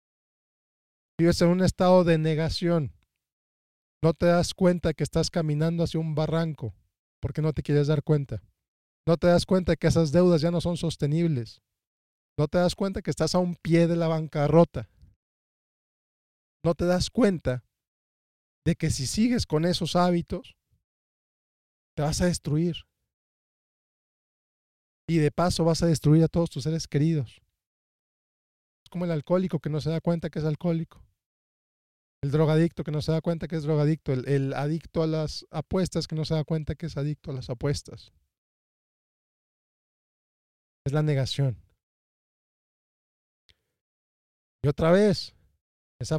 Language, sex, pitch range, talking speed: Spanish, male, 140-175 Hz, 150 wpm